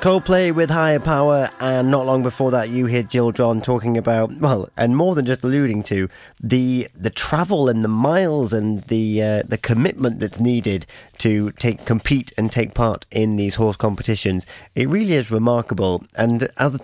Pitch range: 105-130 Hz